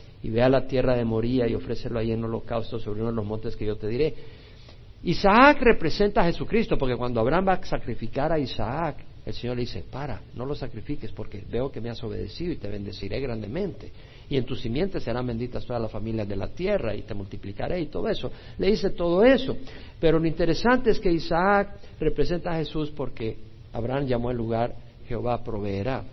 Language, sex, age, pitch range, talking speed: Spanish, male, 50-69, 105-150 Hz, 200 wpm